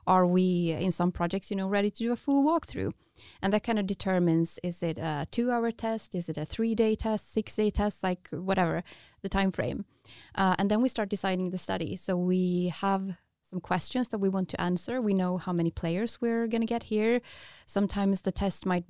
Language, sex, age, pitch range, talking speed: English, female, 20-39, 175-215 Hz, 215 wpm